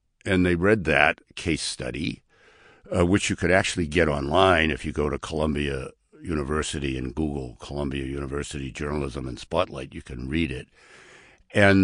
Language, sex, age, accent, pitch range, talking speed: English, male, 60-79, American, 75-95 Hz, 155 wpm